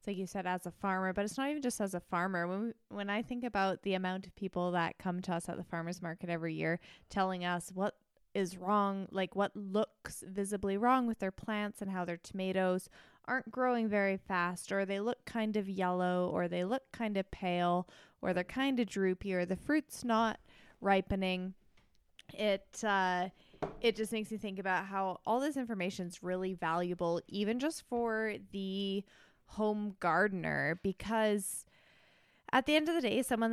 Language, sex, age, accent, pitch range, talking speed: English, female, 20-39, American, 180-220 Hz, 190 wpm